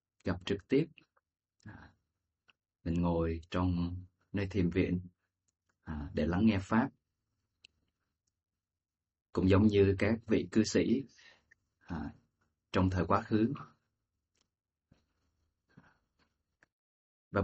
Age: 20-39